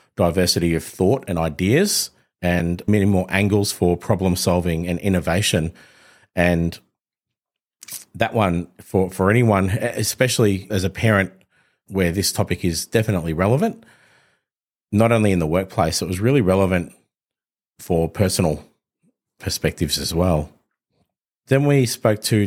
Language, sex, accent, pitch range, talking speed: English, male, Australian, 90-105 Hz, 130 wpm